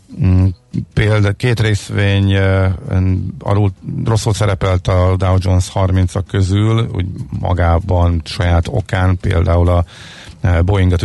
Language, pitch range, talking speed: Hungarian, 85-105 Hz, 90 wpm